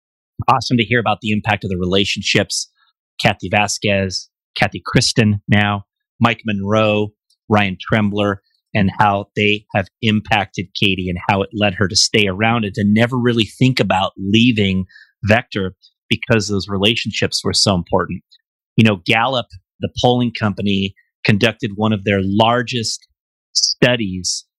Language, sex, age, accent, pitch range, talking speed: English, male, 30-49, American, 100-120 Hz, 140 wpm